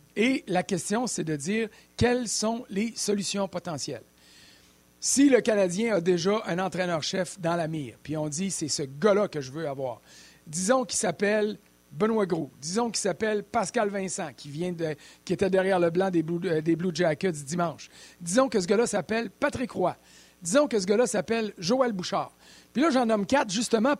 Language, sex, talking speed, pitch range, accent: French, male, 195 wpm, 160-225 Hz, Canadian